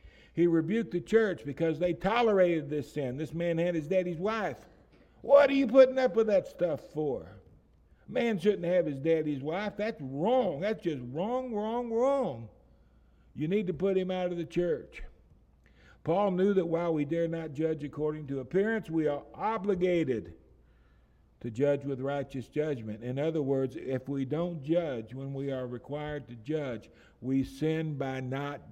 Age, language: 60-79, English